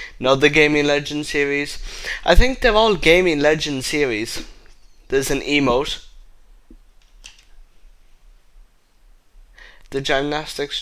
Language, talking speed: English, 95 wpm